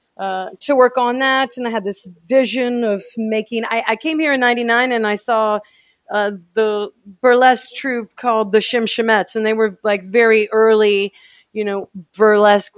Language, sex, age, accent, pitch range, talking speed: English, female, 40-59, American, 165-225 Hz, 175 wpm